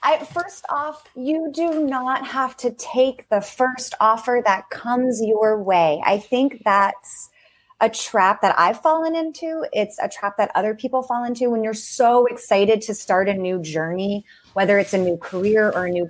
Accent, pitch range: American, 180-255 Hz